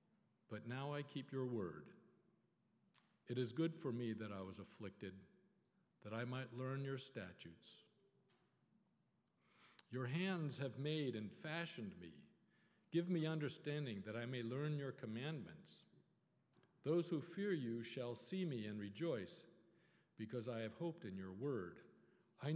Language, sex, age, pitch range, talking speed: English, male, 50-69, 115-160 Hz, 145 wpm